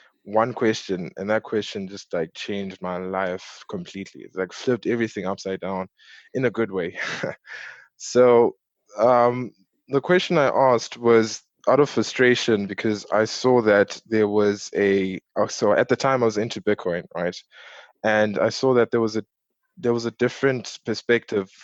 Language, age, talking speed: English, 20-39, 165 wpm